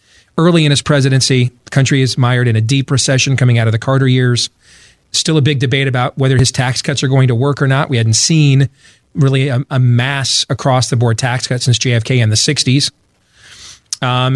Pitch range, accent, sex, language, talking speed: 115-140 Hz, American, male, English, 215 wpm